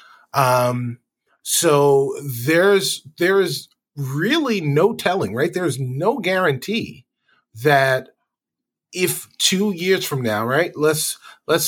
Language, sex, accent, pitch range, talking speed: English, male, American, 135-175 Hz, 110 wpm